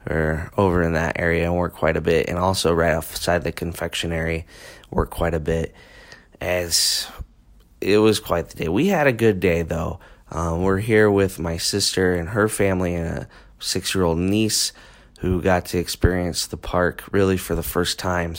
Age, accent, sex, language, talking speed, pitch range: 20-39, American, male, English, 185 wpm, 85-100 Hz